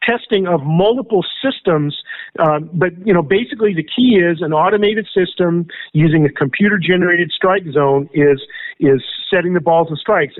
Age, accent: 50-69, American